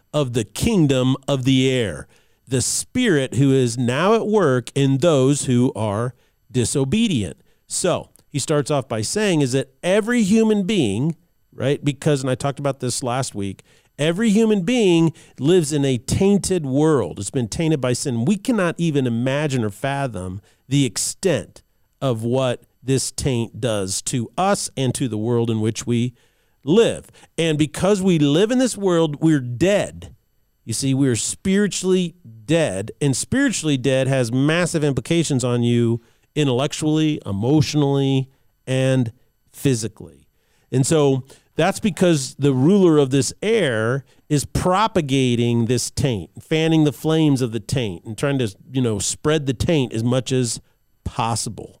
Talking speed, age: 155 wpm, 40-59